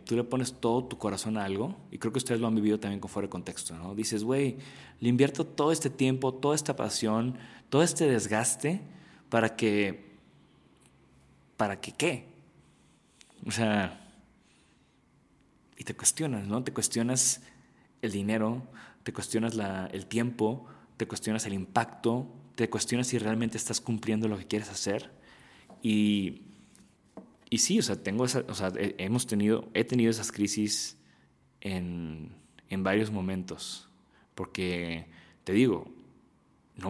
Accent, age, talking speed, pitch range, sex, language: Mexican, 30-49, 150 wpm, 95-115 Hz, male, Spanish